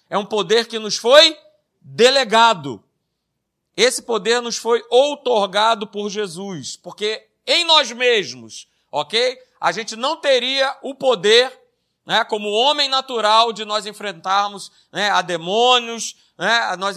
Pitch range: 195-260 Hz